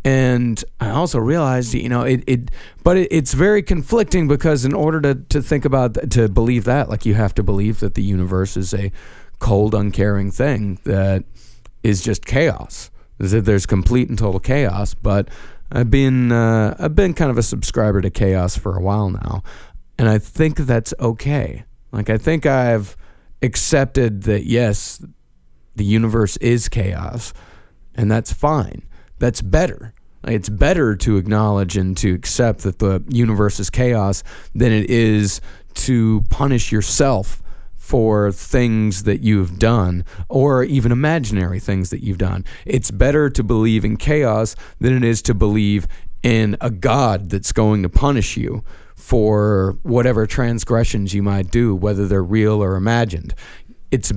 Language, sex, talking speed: English, male, 160 wpm